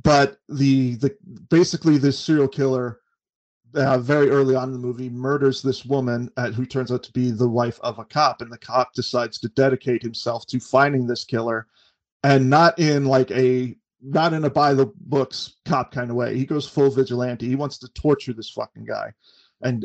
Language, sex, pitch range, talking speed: English, male, 125-140 Hz, 200 wpm